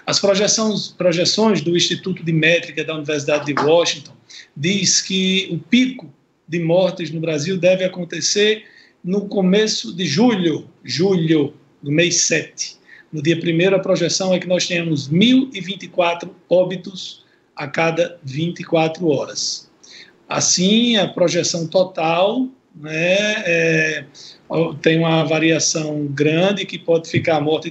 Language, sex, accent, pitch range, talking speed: Portuguese, male, Brazilian, 155-185 Hz, 130 wpm